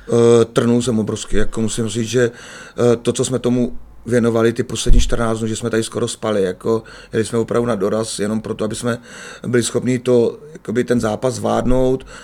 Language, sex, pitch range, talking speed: Czech, male, 115-125 Hz, 185 wpm